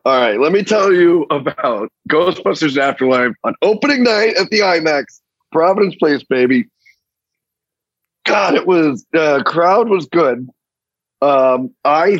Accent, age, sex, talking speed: American, 40-59, male, 135 wpm